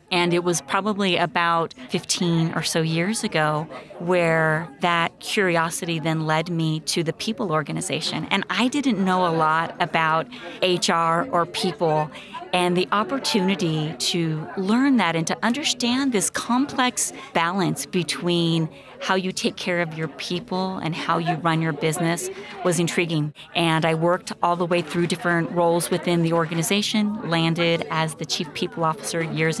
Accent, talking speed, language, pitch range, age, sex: American, 155 wpm, English, 160-185 Hz, 30-49, female